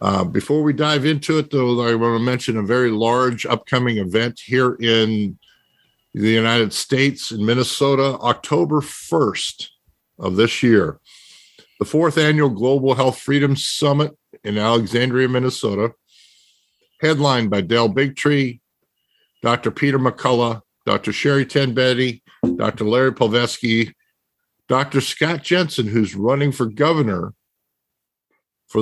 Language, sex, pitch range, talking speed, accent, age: English, male, 110-135 Hz, 125 wpm, American, 50-69